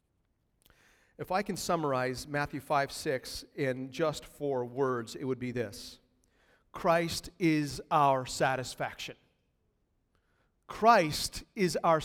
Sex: male